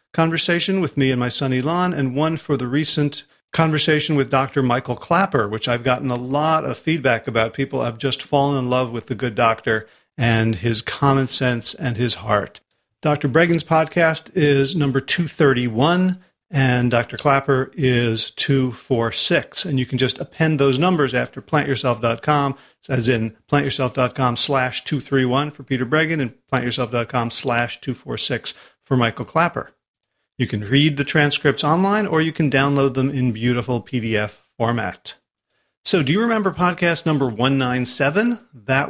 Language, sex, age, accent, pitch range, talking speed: English, male, 40-59, American, 125-150 Hz, 155 wpm